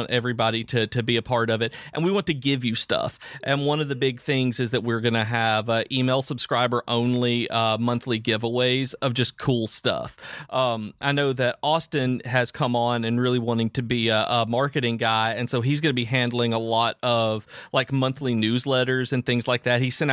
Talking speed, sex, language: 220 wpm, male, English